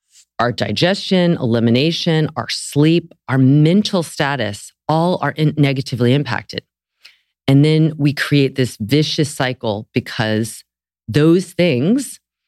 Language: English